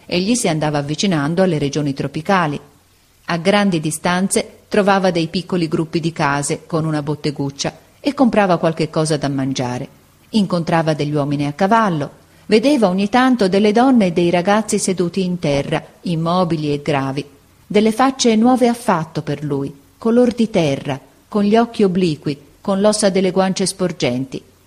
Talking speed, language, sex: 150 wpm, Italian, female